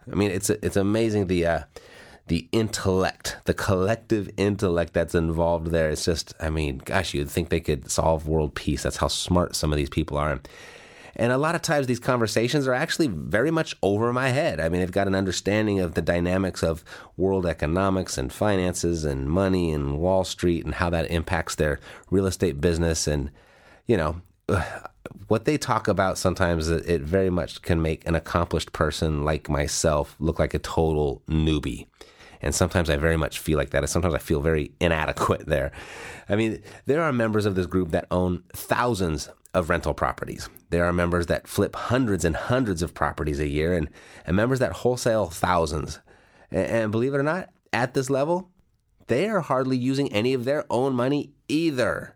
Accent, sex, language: American, male, English